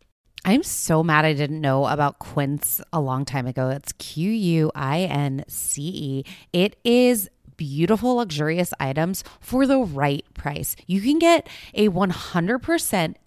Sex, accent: female, American